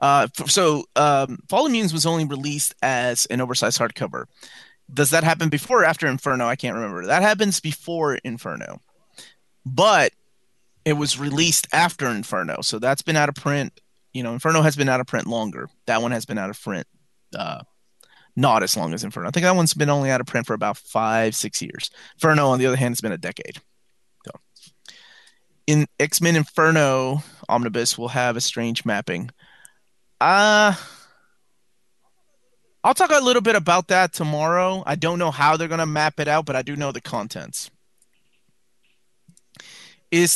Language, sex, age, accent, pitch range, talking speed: English, male, 30-49, American, 125-165 Hz, 175 wpm